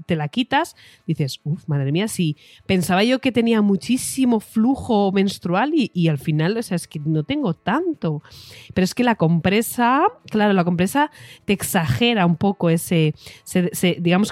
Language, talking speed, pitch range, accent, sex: Spanish, 170 wpm, 155-205 Hz, Spanish, female